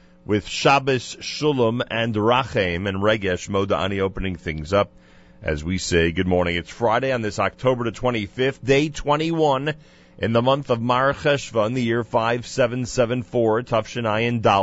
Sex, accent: male, American